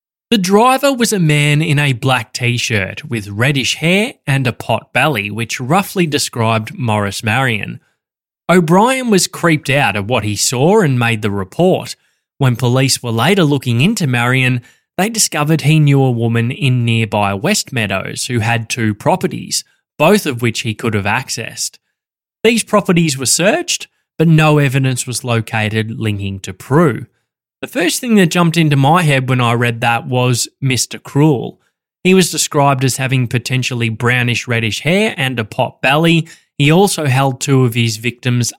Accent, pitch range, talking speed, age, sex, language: Australian, 115-155 Hz, 170 wpm, 10-29, male, English